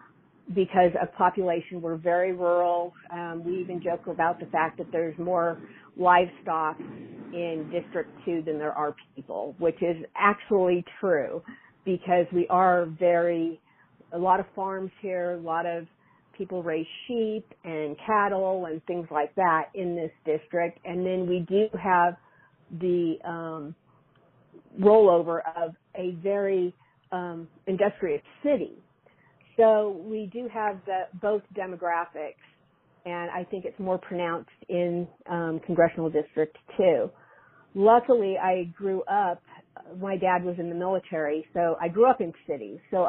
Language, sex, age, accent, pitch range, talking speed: English, female, 50-69, American, 165-190 Hz, 140 wpm